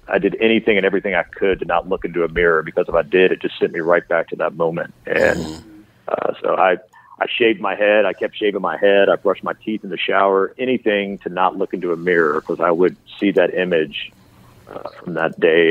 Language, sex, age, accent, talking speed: English, male, 40-59, American, 240 wpm